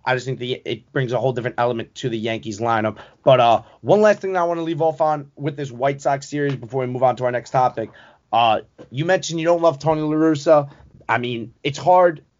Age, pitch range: 20-39, 130-160 Hz